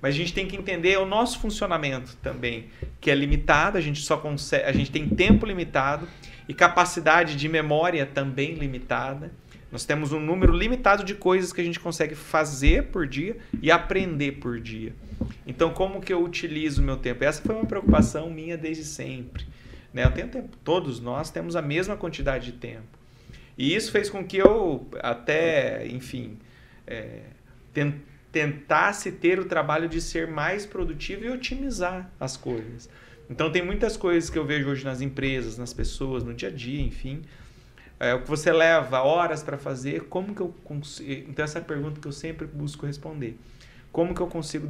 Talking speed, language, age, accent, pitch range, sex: 185 wpm, Portuguese, 30-49, Brazilian, 130-175 Hz, male